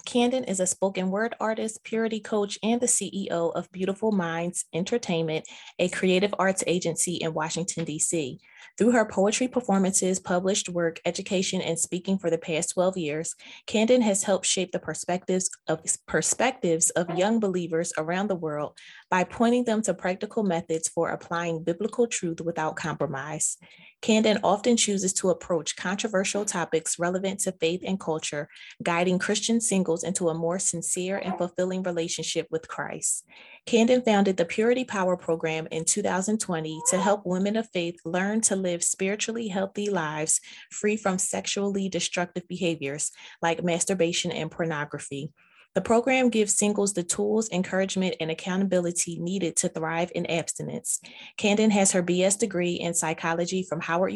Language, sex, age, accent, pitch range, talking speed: English, female, 20-39, American, 170-200 Hz, 150 wpm